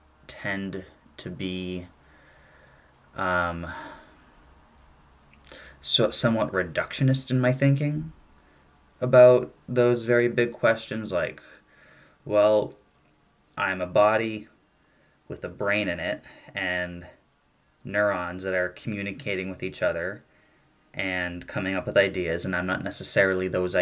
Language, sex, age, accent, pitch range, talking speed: English, male, 20-39, American, 90-110 Hz, 105 wpm